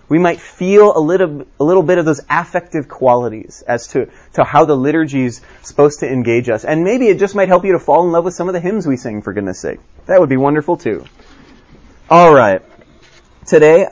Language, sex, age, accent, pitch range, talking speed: English, male, 30-49, American, 130-180 Hz, 225 wpm